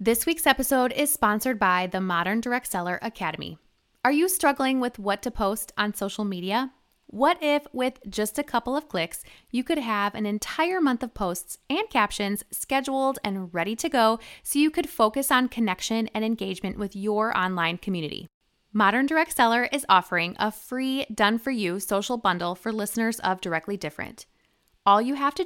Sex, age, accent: female, 20-39, American